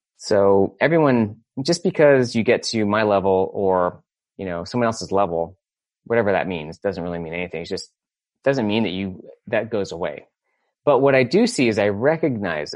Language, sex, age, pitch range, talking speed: English, male, 30-49, 100-130 Hz, 185 wpm